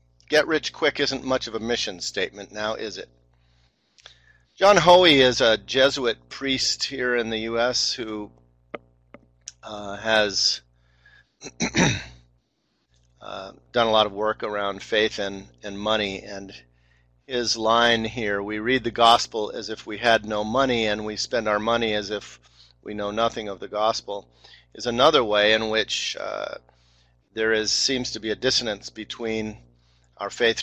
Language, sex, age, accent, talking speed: English, male, 50-69, American, 155 wpm